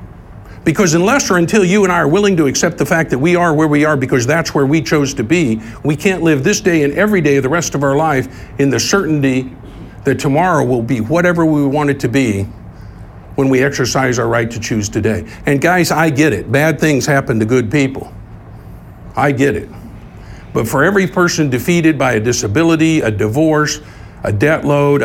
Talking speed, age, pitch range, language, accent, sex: 210 wpm, 50-69, 110-160 Hz, English, American, male